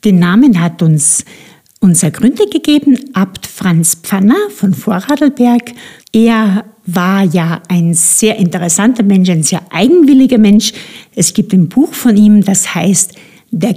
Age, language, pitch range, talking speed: 50-69, German, 185-250 Hz, 140 wpm